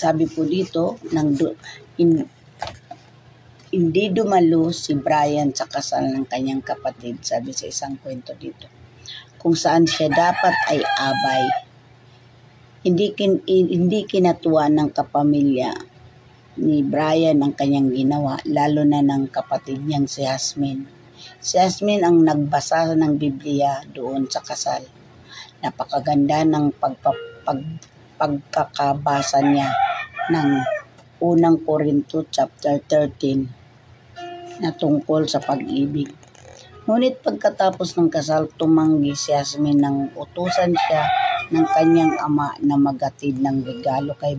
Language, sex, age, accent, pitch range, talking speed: Filipino, female, 50-69, native, 135-165 Hz, 110 wpm